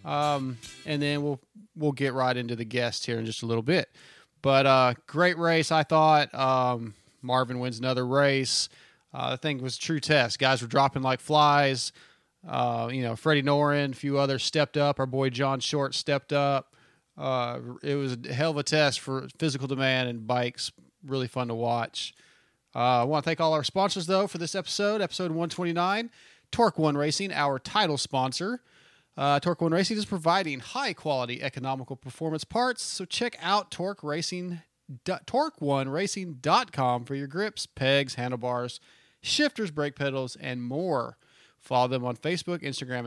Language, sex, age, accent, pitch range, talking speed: English, male, 30-49, American, 130-165 Hz, 175 wpm